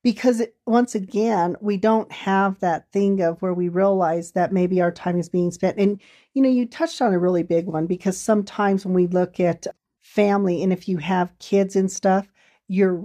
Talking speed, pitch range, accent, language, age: 200 wpm, 180-210 Hz, American, English, 40-59